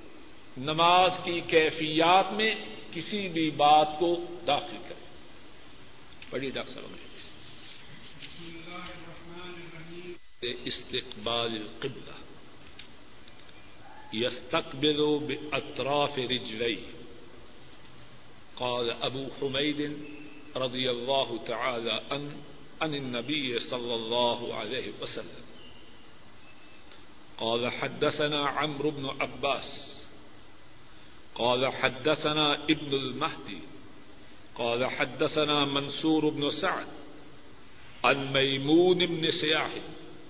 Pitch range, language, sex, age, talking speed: 130-155 Hz, Urdu, male, 50-69, 50 wpm